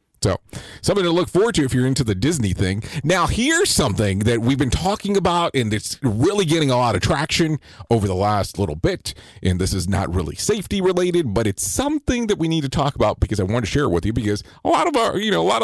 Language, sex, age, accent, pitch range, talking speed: English, male, 40-59, American, 105-170 Hz, 255 wpm